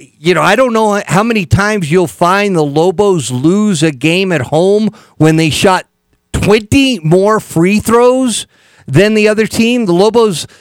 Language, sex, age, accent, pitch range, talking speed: English, male, 50-69, American, 160-205 Hz, 170 wpm